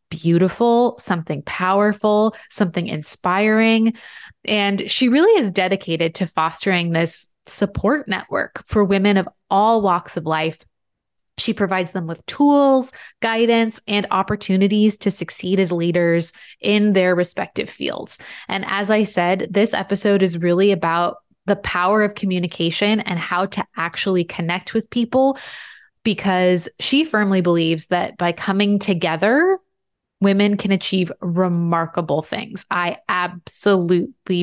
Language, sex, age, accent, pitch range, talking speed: English, female, 20-39, American, 175-225 Hz, 125 wpm